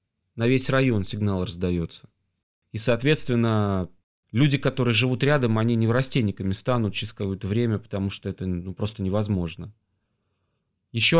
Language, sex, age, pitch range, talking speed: Russian, male, 30-49, 100-125 Hz, 135 wpm